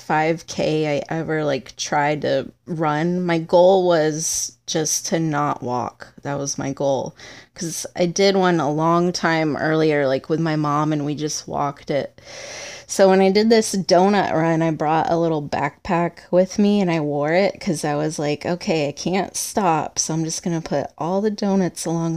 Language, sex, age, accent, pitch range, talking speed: English, female, 20-39, American, 155-185 Hz, 190 wpm